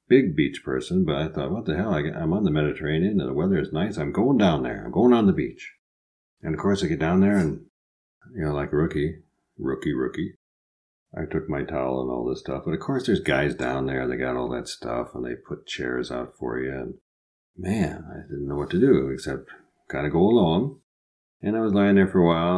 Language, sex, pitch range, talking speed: English, male, 65-95 Hz, 240 wpm